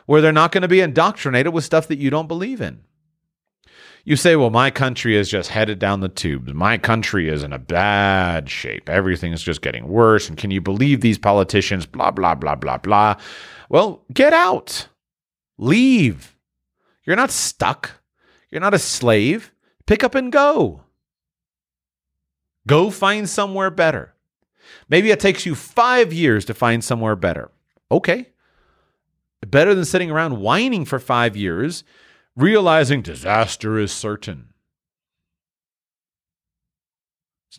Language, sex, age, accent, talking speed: English, male, 30-49, American, 145 wpm